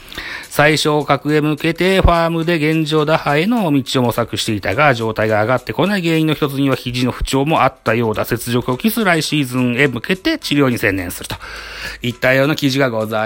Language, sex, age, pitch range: Japanese, male, 40-59, 110-175 Hz